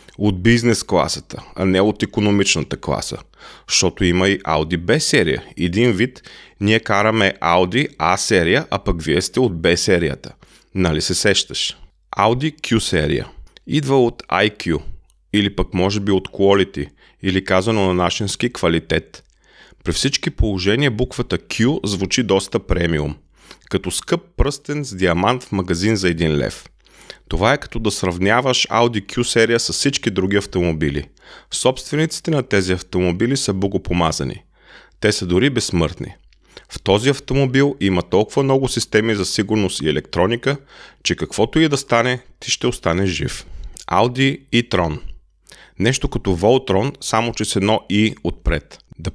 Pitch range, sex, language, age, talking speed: 90-120 Hz, male, Bulgarian, 30-49, 150 wpm